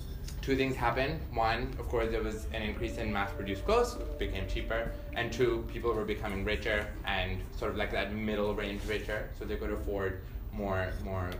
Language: English